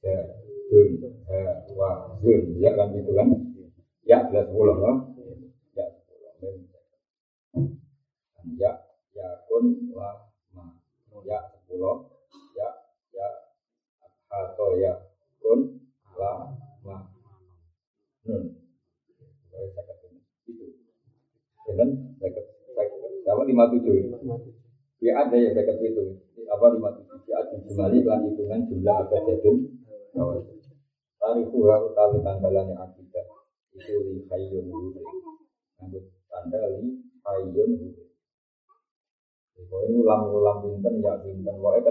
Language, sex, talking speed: Indonesian, male, 55 wpm